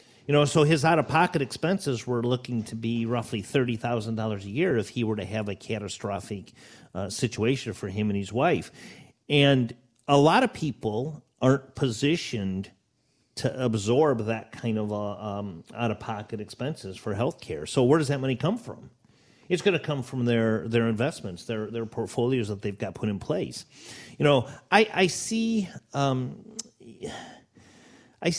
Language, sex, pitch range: English, male, 110-140 Hz